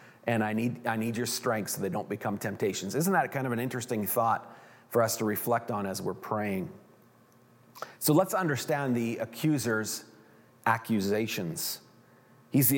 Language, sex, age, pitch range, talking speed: English, male, 40-59, 115-135 Hz, 160 wpm